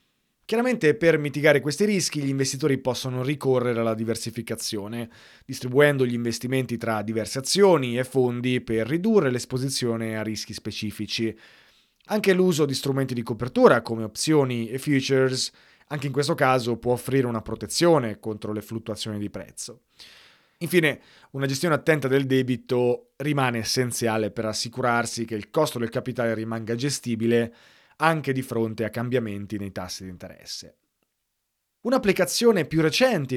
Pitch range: 115-145 Hz